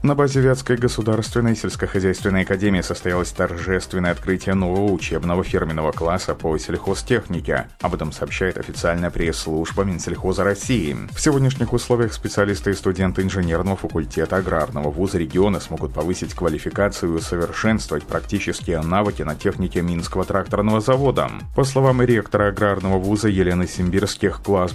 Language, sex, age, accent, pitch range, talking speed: Russian, male, 30-49, native, 90-105 Hz, 130 wpm